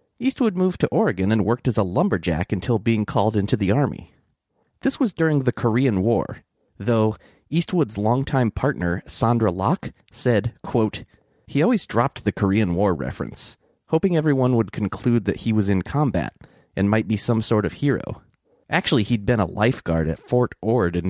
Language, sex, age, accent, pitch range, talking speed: English, male, 30-49, American, 105-150 Hz, 175 wpm